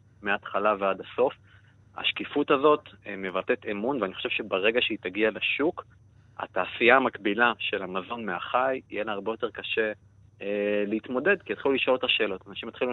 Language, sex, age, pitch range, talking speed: Hebrew, male, 30-49, 100-120 Hz, 150 wpm